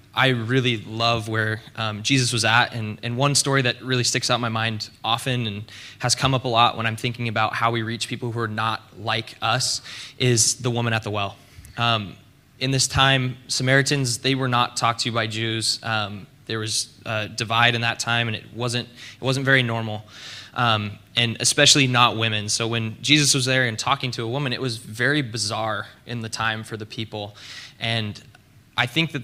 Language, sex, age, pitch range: English, male, 20-39, 110-130 Hz